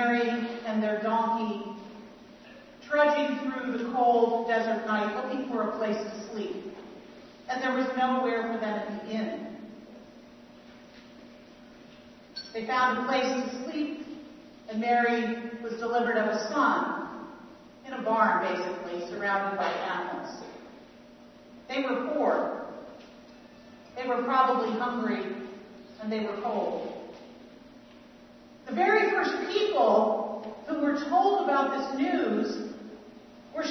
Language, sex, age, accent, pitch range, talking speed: English, female, 40-59, American, 220-280 Hz, 120 wpm